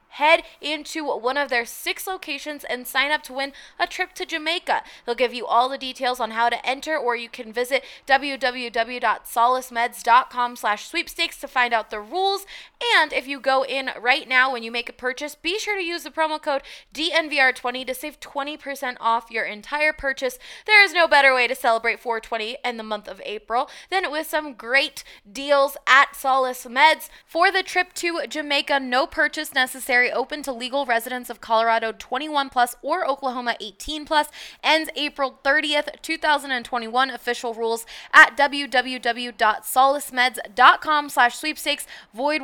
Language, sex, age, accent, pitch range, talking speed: English, female, 20-39, American, 240-305 Hz, 165 wpm